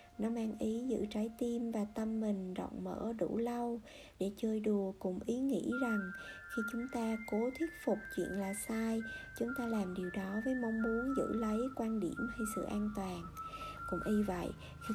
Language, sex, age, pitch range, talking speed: Vietnamese, male, 60-79, 200-245 Hz, 195 wpm